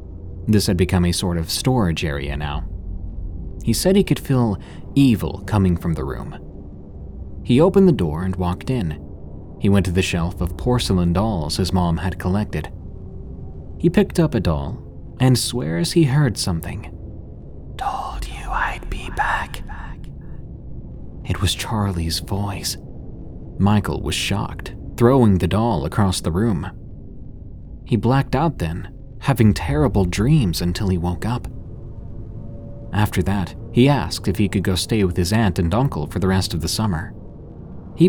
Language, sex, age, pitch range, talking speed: English, male, 30-49, 85-115 Hz, 155 wpm